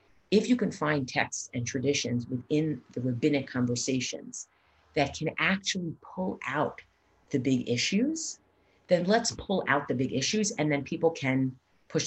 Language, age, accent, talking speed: English, 40-59, American, 155 wpm